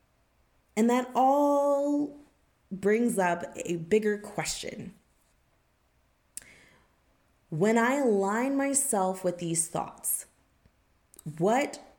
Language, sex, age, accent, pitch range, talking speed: English, female, 20-39, American, 155-230 Hz, 80 wpm